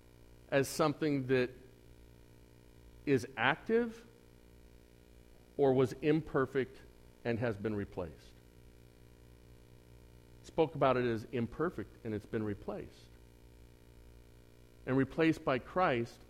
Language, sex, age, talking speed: English, male, 50-69, 90 wpm